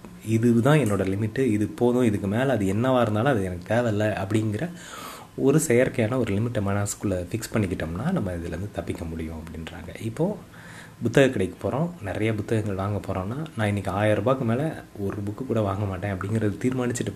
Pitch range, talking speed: 95-120 Hz, 165 wpm